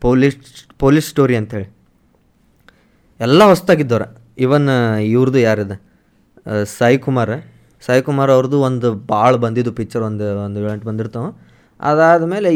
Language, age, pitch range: Kannada, 20-39, 115-145 Hz